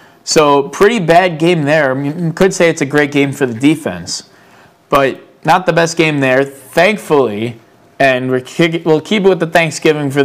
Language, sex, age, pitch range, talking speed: English, male, 20-39, 135-170 Hz, 200 wpm